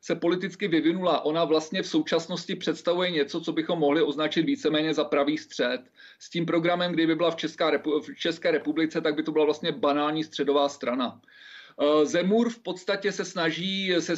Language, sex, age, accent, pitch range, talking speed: Czech, male, 40-59, native, 150-175 Hz, 180 wpm